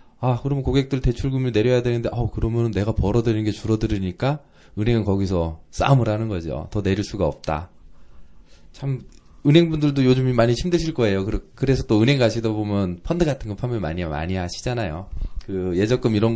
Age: 20-39